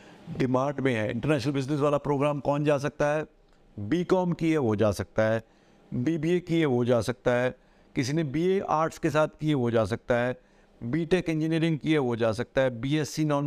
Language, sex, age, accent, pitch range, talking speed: Hindi, male, 50-69, native, 135-165 Hz, 200 wpm